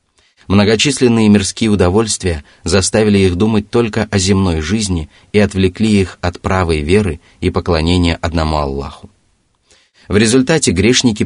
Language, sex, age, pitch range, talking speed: Russian, male, 30-49, 85-105 Hz, 125 wpm